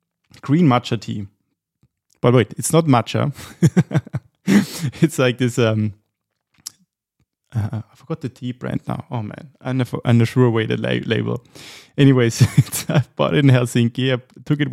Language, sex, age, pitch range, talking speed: English, male, 20-39, 115-145 Hz, 150 wpm